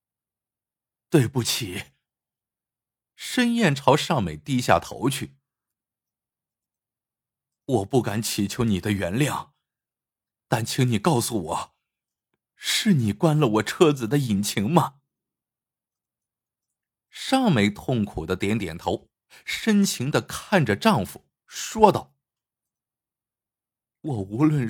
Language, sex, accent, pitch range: Chinese, male, native, 110-150 Hz